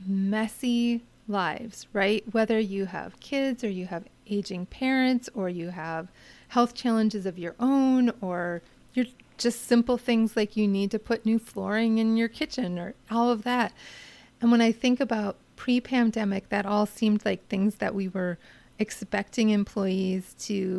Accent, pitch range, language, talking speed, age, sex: American, 195-235 Hz, English, 160 wpm, 30-49, female